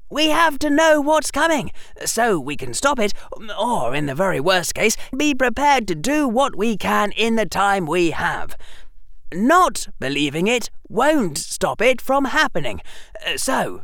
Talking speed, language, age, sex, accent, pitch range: 165 wpm, English, 30-49, male, British, 190-275 Hz